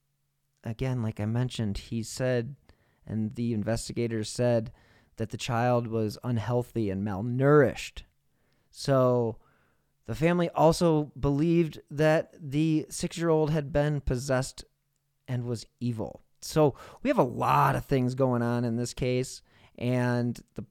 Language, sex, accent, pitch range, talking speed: English, male, American, 110-140 Hz, 130 wpm